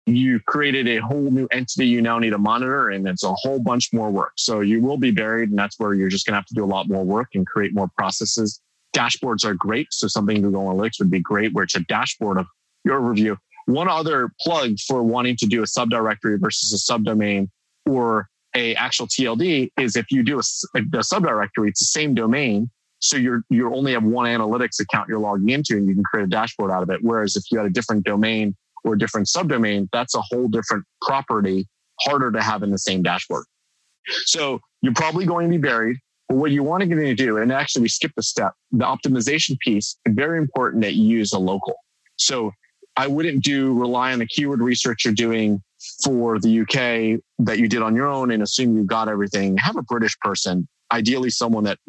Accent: American